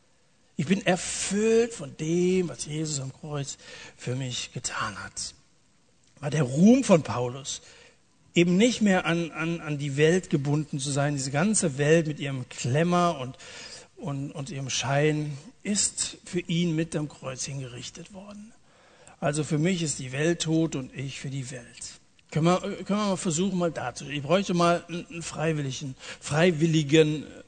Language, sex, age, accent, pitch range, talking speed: German, male, 60-79, German, 140-185 Hz, 160 wpm